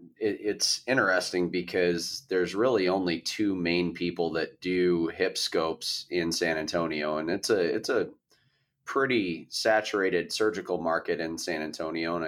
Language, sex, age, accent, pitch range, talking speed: English, male, 30-49, American, 80-90 Hz, 140 wpm